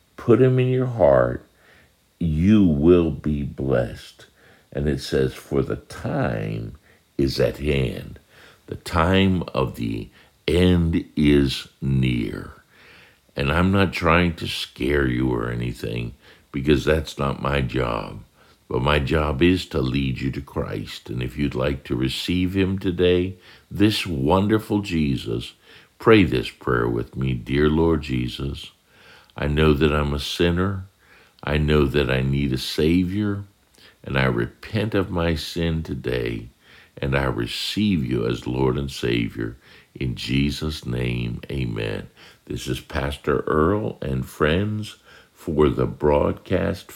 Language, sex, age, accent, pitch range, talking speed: English, male, 60-79, American, 65-90 Hz, 140 wpm